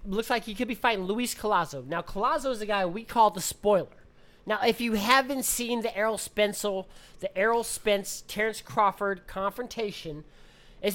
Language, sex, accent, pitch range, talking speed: English, male, American, 190-235 Hz, 175 wpm